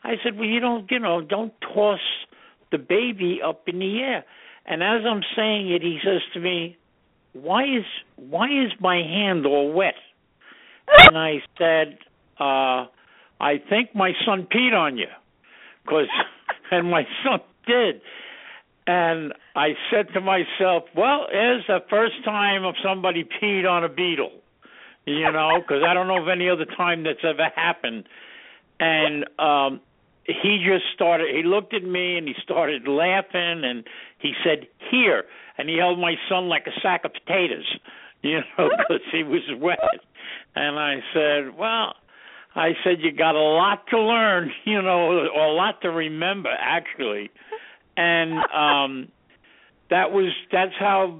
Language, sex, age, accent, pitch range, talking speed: English, male, 60-79, American, 160-205 Hz, 160 wpm